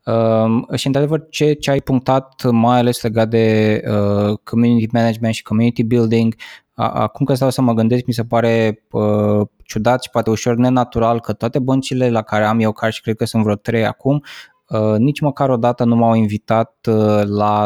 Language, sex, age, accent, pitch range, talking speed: Romanian, male, 20-39, native, 110-125 Hz, 195 wpm